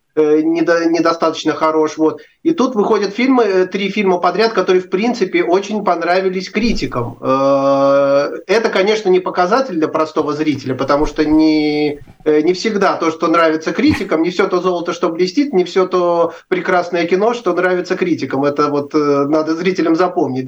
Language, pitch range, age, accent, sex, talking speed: Russian, 160-190 Hz, 30-49, native, male, 150 wpm